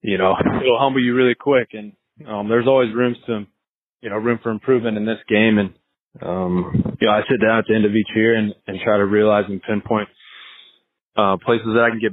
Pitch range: 100-115 Hz